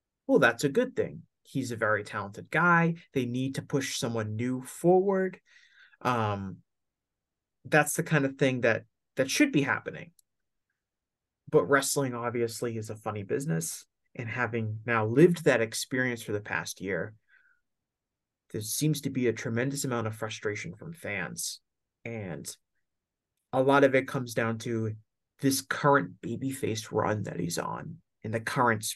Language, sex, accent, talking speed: English, male, American, 155 wpm